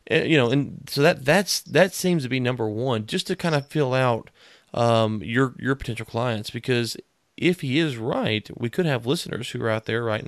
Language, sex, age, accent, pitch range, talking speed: English, male, 30-49, American, 110-135 Hz, 215 wpm